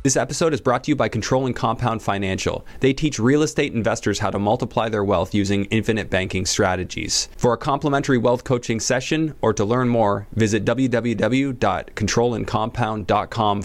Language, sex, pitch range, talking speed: English, male, 100-125 Hz, 165 wpm